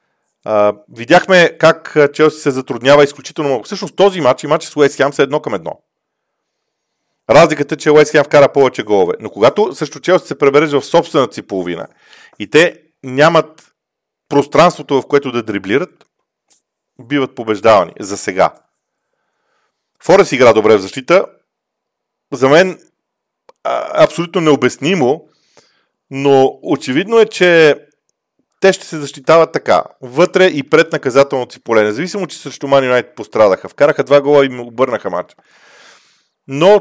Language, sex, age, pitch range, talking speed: Bulgarian, male, 40-59, 125-170 Hz, 135 wpm